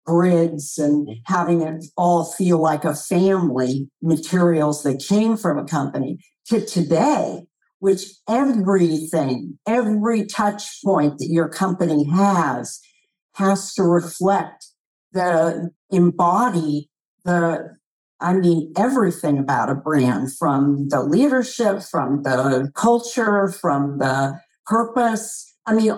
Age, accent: 50-69, American